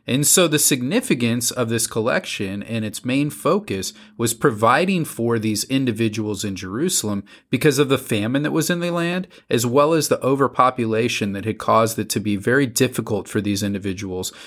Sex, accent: male, American